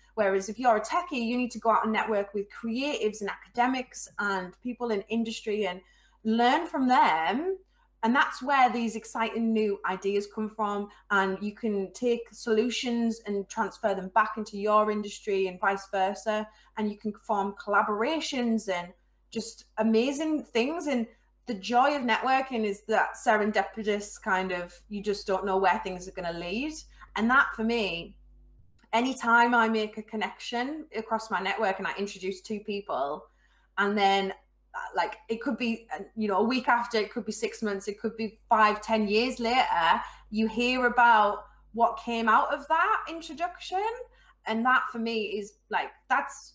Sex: female